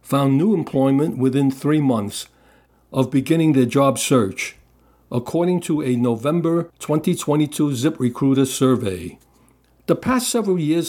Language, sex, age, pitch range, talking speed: English, male, 60-79, 125-155 Hz, 125 wpm